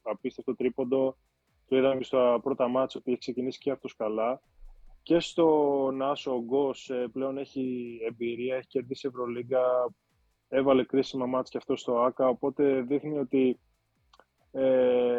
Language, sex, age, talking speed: Greek, male, 20-39, 140 wpm